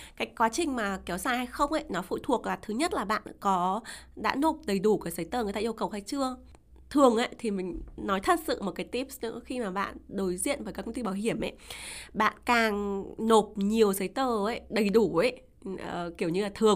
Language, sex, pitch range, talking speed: Vietnamese, female, 195-255 Hz, 245 wpm